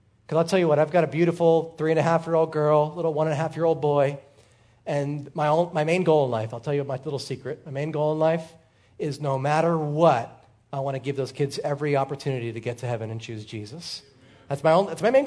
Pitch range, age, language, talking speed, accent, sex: 130-175 Hz, 30-49, English, 230 wpm, American, male